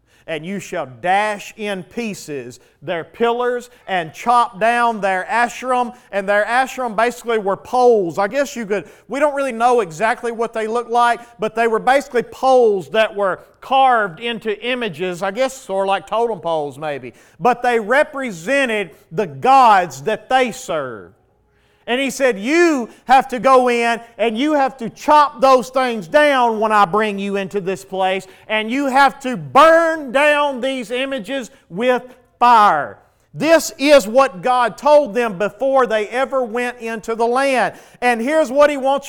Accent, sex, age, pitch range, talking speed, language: American, male, 40-59, 210-265 Hz, 165 wpm, English